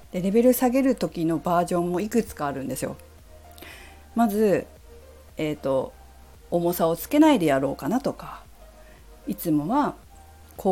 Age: 40-59